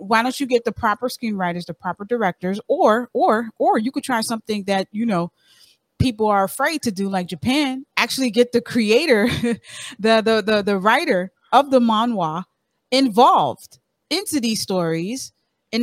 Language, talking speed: English, 165 wpm